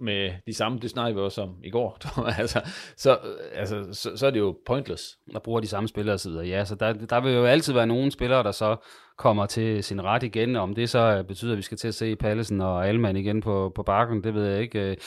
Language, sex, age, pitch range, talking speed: Danish, male, 30-49, 95-115 Hz, 250 wpm